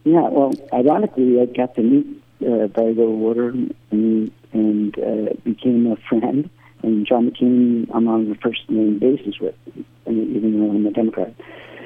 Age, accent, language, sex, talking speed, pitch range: 50-69, American, English, male, 160 wpm, 105-130 Hz